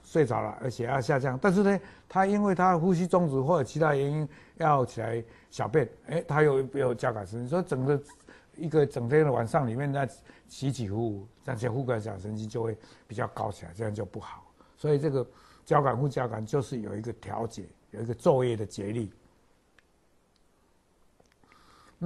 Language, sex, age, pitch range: Chinese, male, 60-79, 120-160 Hz